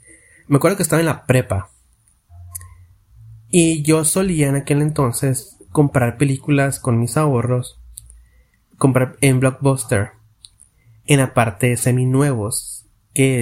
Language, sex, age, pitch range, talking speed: Spanish, male, 30-49, 110-145 Hz, 120 wpm